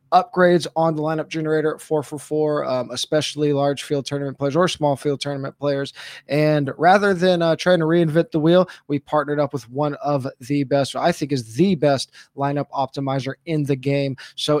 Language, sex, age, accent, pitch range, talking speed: English, male, 20-39, American, 135-150 Hz, 190 wpm